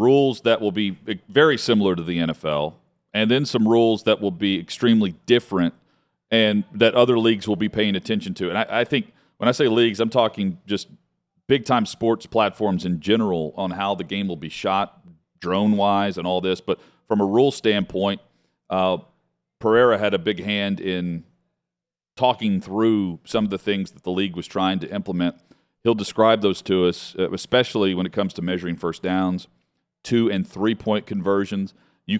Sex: male